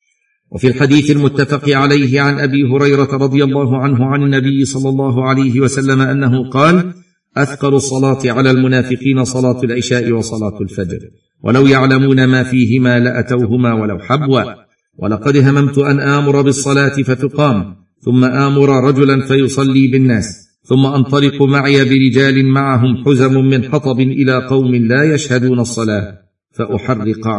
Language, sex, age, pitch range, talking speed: Arabic, male, 50-69, 105-135 Hz, 125 wpm